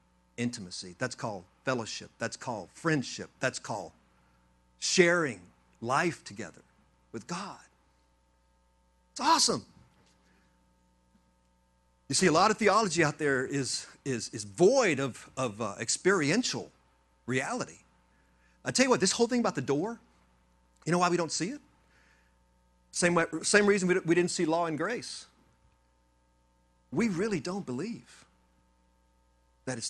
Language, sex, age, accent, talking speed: English, male, 50-69, American, 130 wpm